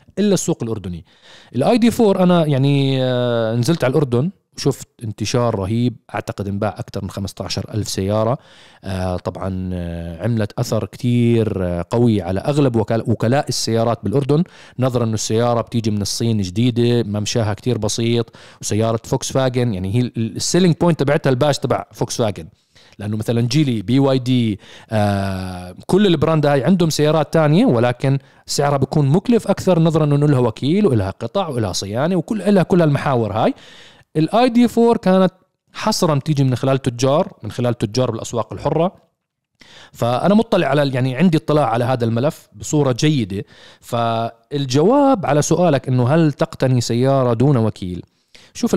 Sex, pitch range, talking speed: male, 110-155 Hz, 150 wpm